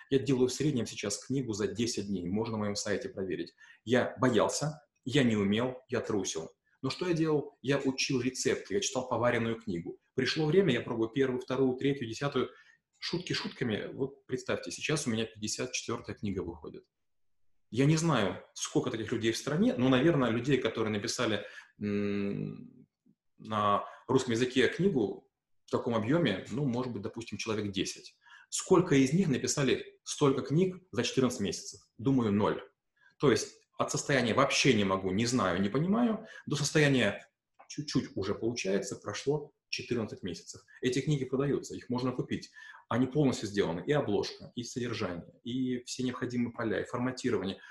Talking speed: 155 wpm